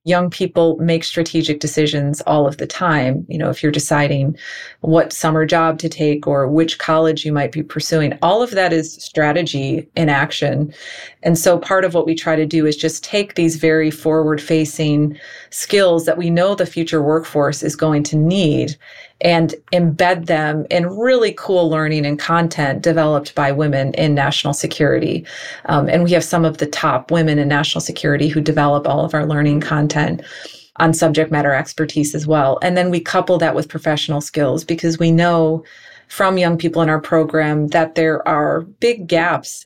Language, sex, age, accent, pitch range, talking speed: English, female, 30-49, American, 150-170 Hz, 185 wpm